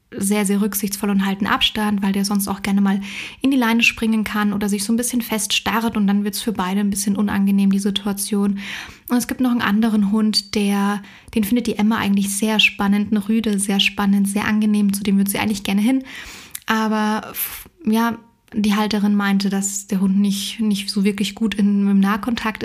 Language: German